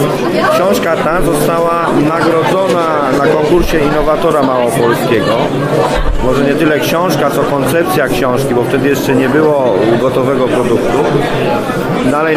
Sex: male